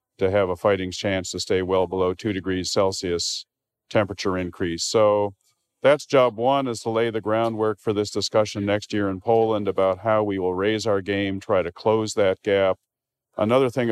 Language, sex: English, male